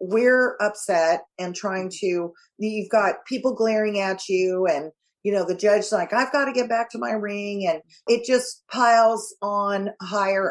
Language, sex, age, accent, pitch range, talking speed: English, female, 40-59, American, 190-230 Hz, 175 wpm